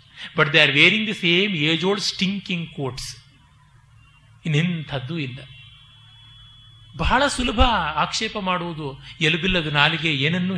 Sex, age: male, 30-49